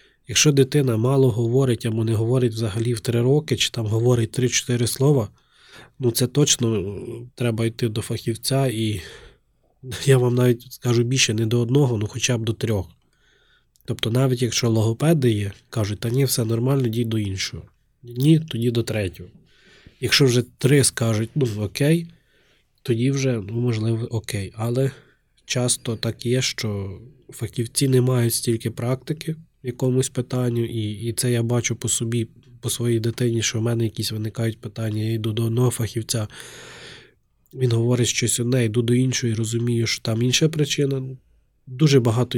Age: 20-39